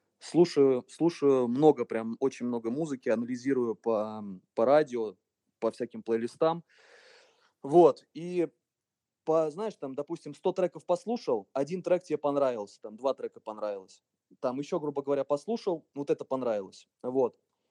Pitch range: 125-170 Hz